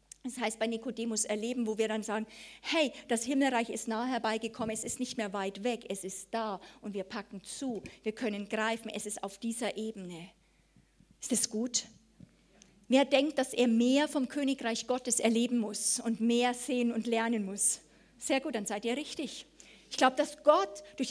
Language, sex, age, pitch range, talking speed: German, female, 50-69, 230-285 Hz, 190 wpm